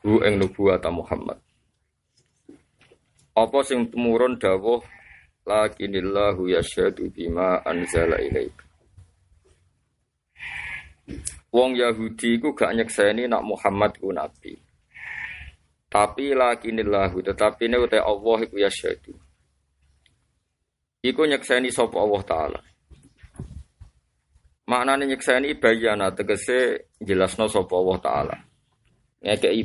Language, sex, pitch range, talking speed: Indonesian, male, 90-125 Hz, 95 wpm